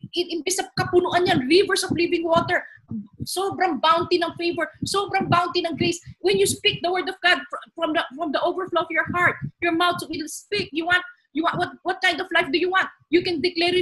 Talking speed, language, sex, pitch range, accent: 220 wpm, Filipino, female, 280-345 Hz, native